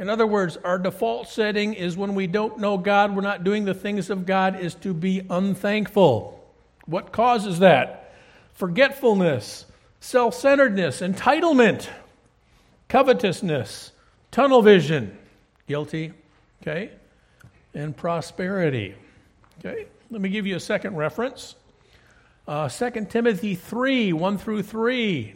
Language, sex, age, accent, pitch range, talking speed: English, male, 50-69, American, 185-240 Hz, 125 wpm